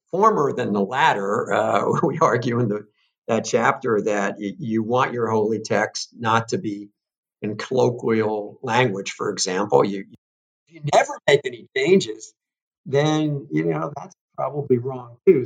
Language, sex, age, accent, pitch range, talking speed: English, male, 50-69, American, 110-150 Hz, 150 wpm